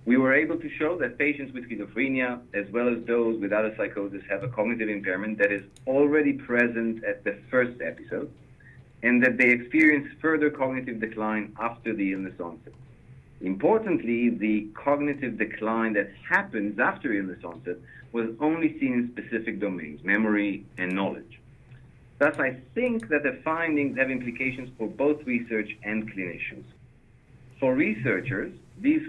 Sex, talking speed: male, 150 wpm